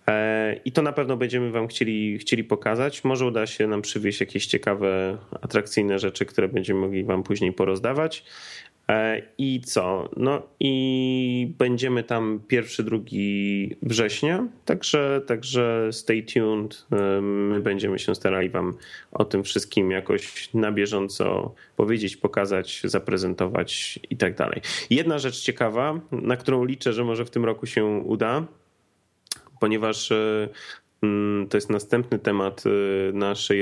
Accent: native